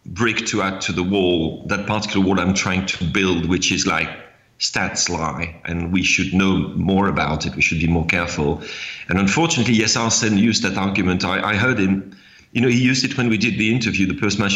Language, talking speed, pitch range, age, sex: English, 220 wpm, 90-105 Hz, 40-59, male